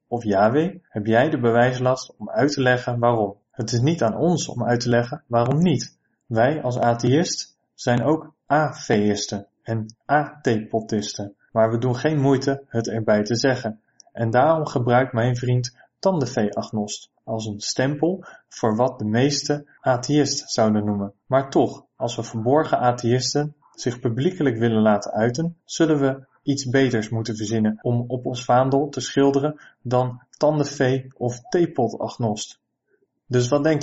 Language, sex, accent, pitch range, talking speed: Dutch, male, Dutch, 115-145 Hz, 155 wpm